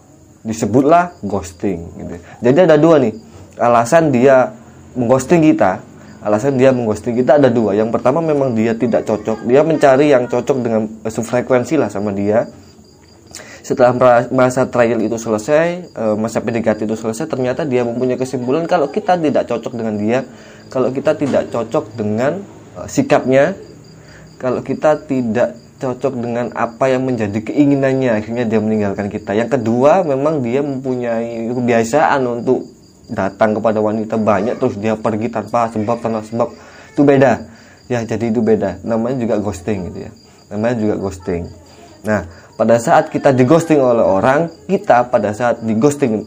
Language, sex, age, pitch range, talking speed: Indonesian, male, 20-39, 110-130 Hz, 150 wpm